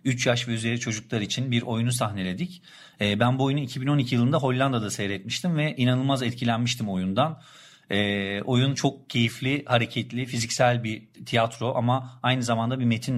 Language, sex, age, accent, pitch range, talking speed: Turkish, male, 50-69, native, 115-140 Hz, 145 wpm